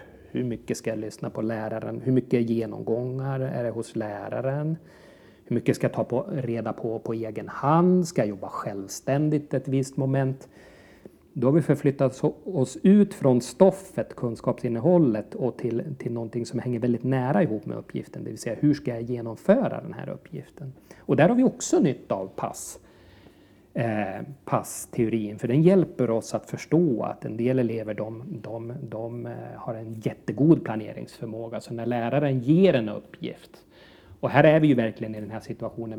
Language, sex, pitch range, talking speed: English, male, 110-135 Hz, 180 wpm